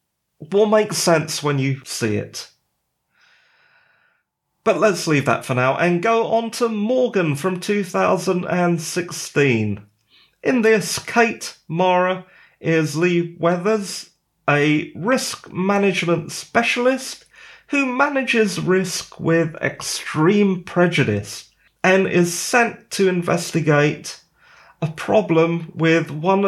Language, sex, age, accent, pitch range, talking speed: English, male, 30-49, British, 145-190 Hz, 105 wpm